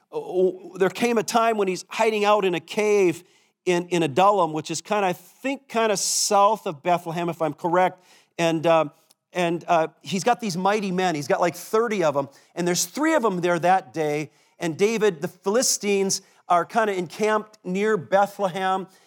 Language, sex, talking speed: English, male, 190 wpm